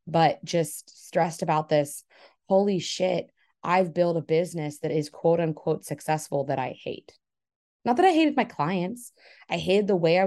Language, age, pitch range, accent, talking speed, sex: English, 20-39, 155-200 Hz, American, 175 wpm, female